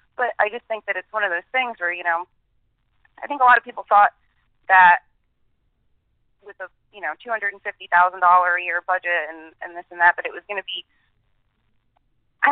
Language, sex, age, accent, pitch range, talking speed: English, female, 30-49, American, 165-200 Hz, 195 wpm